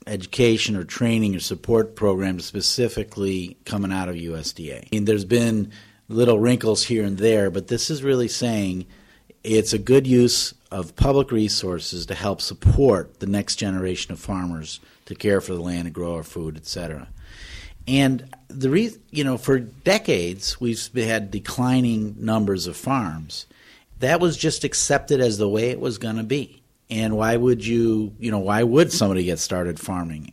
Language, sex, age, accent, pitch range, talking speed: English, male, 50-69, American, 95-120 Hz, 175 wpm